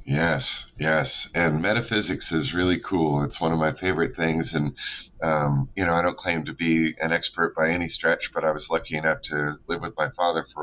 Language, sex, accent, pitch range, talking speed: English, male, American, 75-90 Hz, 215 wpm